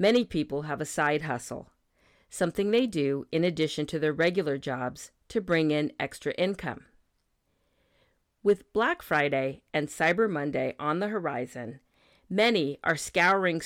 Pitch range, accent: 150-215 Hz, American